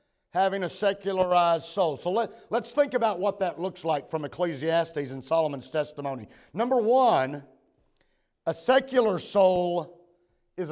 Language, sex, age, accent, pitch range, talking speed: English, male, 50-69, American, 170-215 Hz, 135 wpm